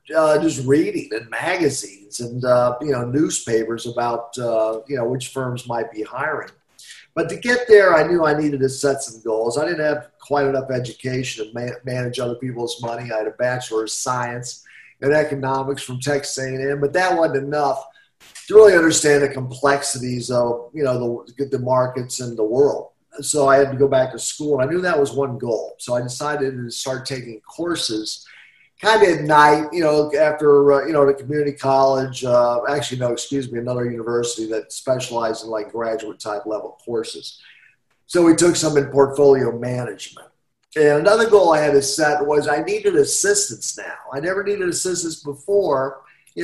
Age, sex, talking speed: 50-69, male, 185 wpm